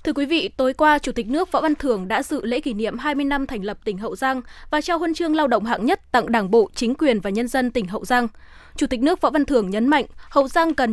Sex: female